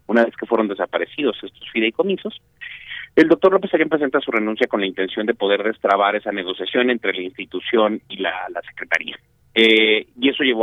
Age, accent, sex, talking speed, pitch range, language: 40-59, Mexican, male, 185 wpm, 95-125 Hz, Spanish